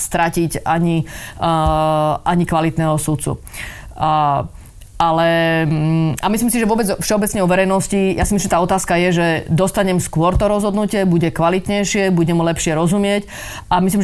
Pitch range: 170-200 Hz